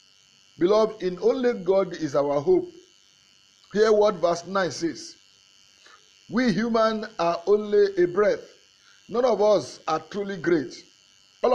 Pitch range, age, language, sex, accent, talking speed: 155-230 Hz, 50-69, English, male, Nigerian, 130 wpm